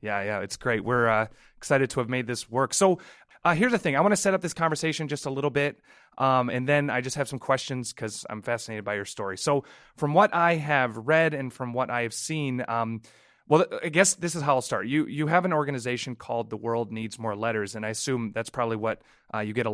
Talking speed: 255 wpm